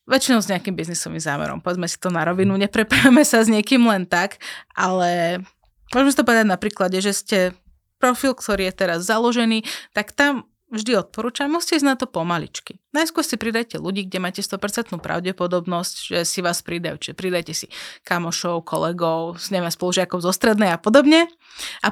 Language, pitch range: Slovak, 180-220 Hz